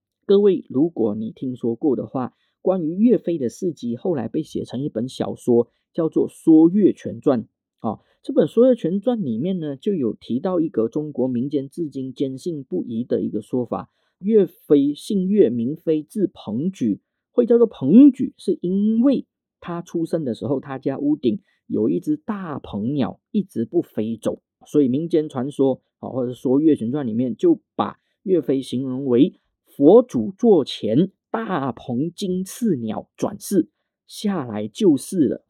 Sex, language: male, Chinese